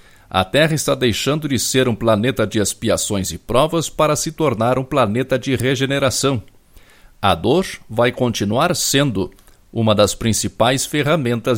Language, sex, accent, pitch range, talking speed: Portuguese, male, Brazilian, 105-140 Hz, 145 wpm